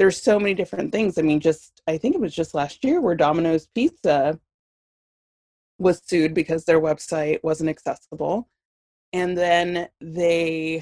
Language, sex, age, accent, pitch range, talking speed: English, female, 20-39, American, 155-210 Hz, 155 wpm